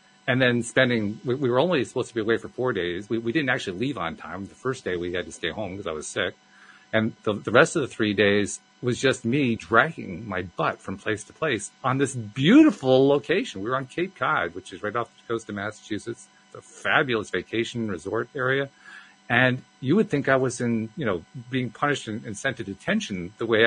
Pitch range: 110-135 Hz